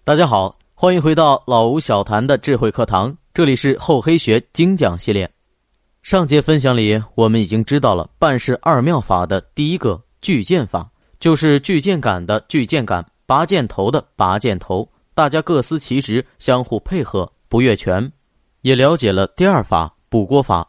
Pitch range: 100-145 Hz